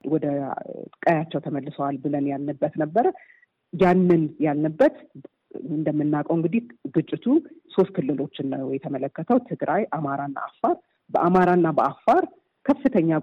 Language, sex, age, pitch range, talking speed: Amharic, female, 40-59, 145-185 Hz, 85 wpm